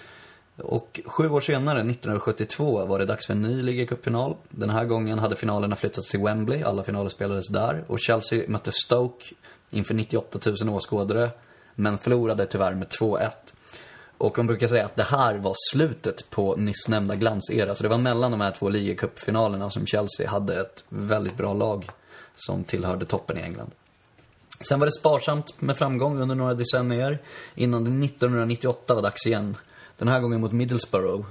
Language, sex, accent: Swedish, male, native